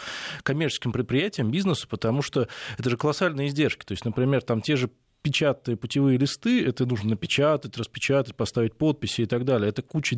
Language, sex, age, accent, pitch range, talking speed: Russian, male, 20-39, native, 115-140 Hz, 165 wpm